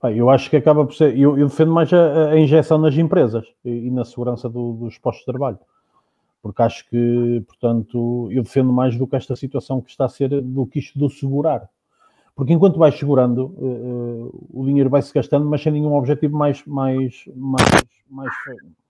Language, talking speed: Portuguese, 180 wpm